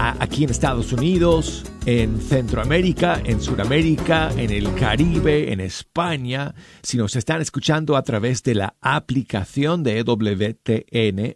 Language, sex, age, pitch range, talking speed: Spanish, male, 50-69, 110-155 Hz, 125 wpm